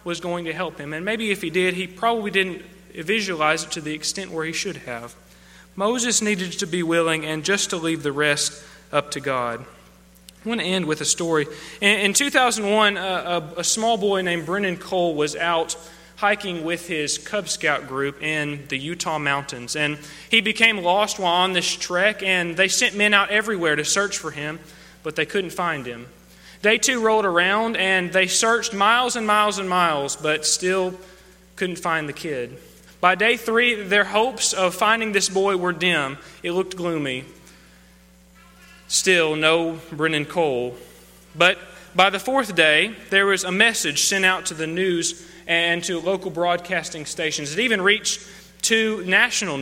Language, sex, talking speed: English, male, 180 wpm